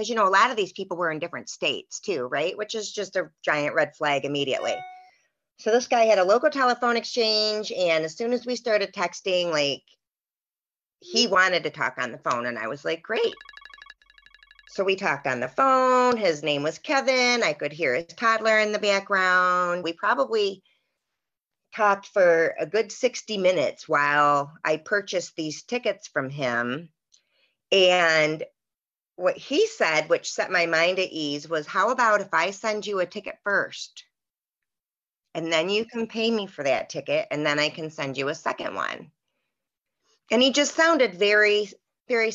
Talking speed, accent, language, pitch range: 180 wpm, American, English, 160-235 Hz